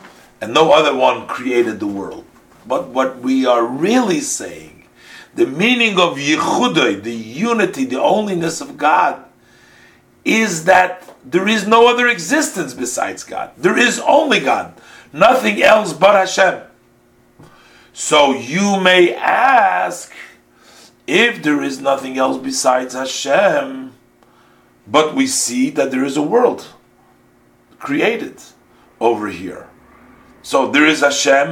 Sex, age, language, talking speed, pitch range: male, 50-69, English, 125 wpm, 135-225 Hz